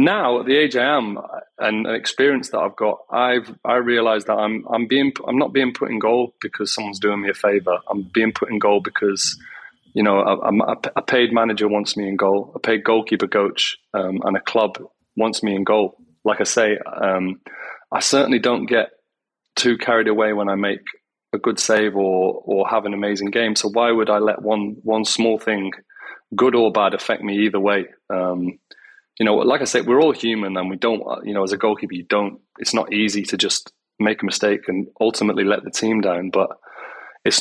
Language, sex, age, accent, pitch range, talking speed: English, male, 30-49, British, 100-115 Hz, 215 wpm